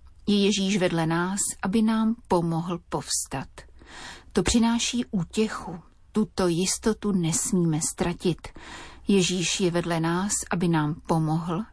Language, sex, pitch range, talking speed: Slovak, female, 160-205 Hz, 115 wpm